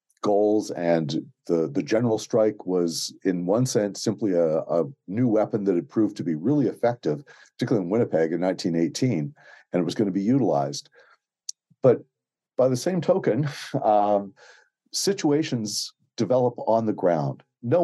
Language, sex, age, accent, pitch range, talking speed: English, male, 50-69, American, 85-115 Hz, 155 wpm